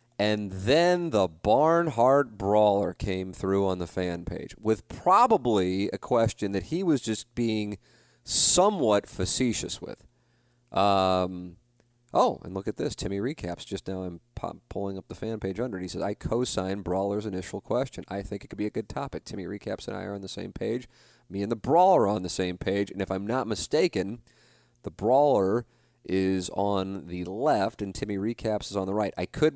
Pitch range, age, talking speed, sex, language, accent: 95-120 Hz, 30-49, 190 wpm, male, English, American